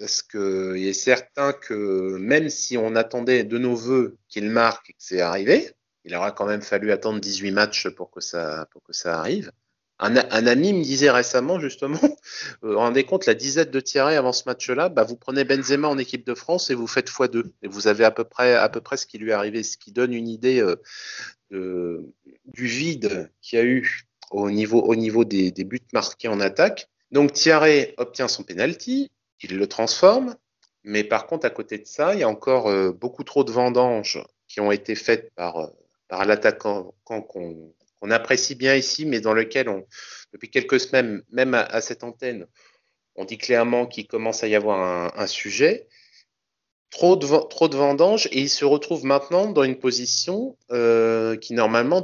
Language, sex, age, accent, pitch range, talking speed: French, male, 30-49, French, 110-140 Hz, 200 wpm